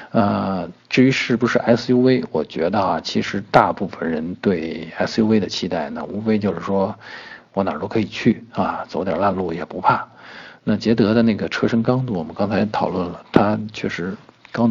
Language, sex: Chinese, male